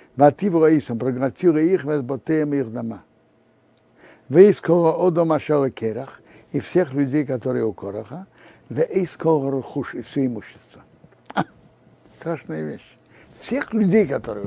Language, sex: Russian, male